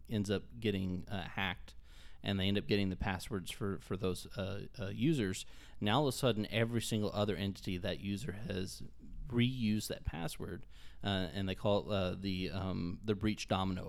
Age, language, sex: 30-49, English, male